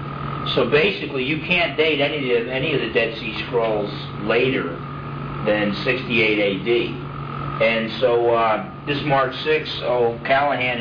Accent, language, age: American, English, 50-69